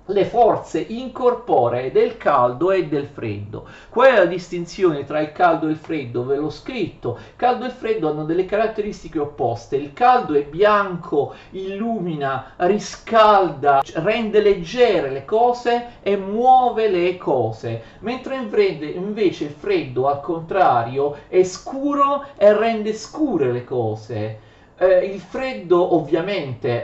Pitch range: 140-220 Hz